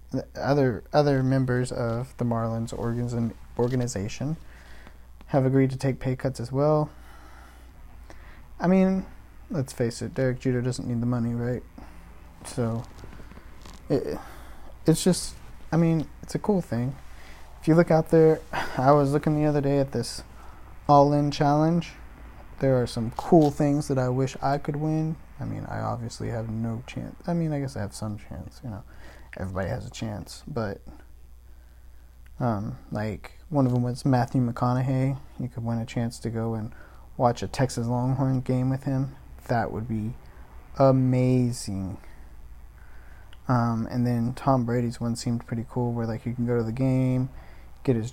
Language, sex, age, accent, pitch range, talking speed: English, male, 20-39, American, 100-135 Hz, 165 wpm